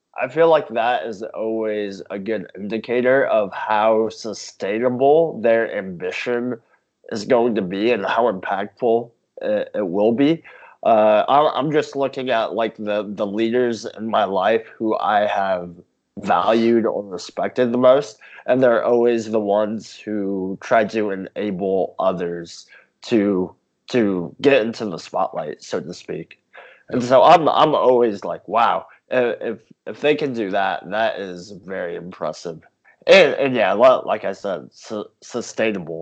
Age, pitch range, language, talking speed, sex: 20-39, 105-135 Hz, English, 150 wpm, male